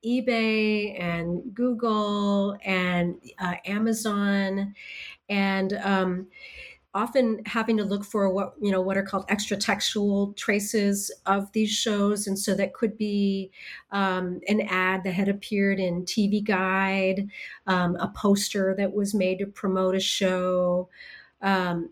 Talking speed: 135 wpm